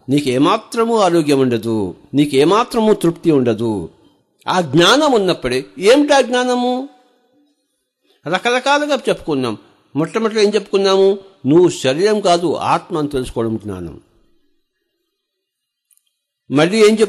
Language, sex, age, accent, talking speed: English, male, 60-79, Indian, 110 wpm